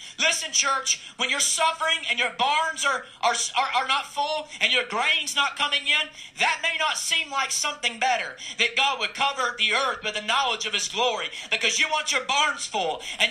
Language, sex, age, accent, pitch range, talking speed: English, male, 40-59, American, 230-300 Hz, 205 wpm